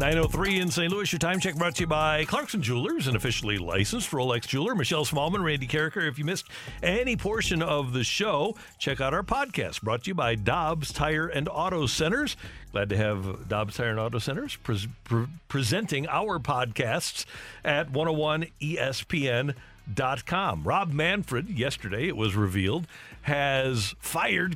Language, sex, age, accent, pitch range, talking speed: English, male, 50-69, American, 115-155 Hz, 155 wpm